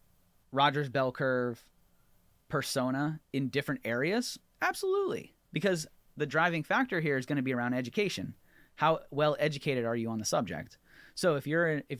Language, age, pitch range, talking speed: English, 30-49, 120-160 Hz, 155 wpm